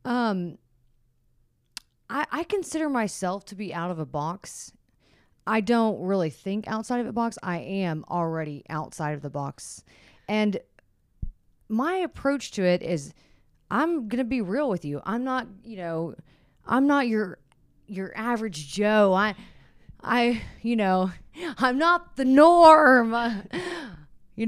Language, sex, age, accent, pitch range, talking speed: English, female, 30-49, American, 175-245 Hz, 140 wpm